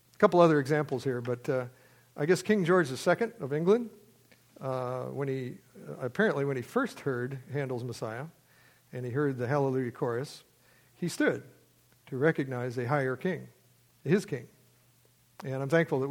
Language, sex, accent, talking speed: English, male, American, 160 wpm